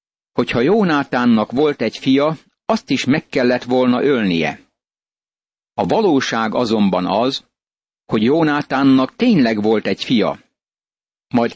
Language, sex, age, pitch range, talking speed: Hungarian, male, 60-79, 115-150 Hz, 115 wpm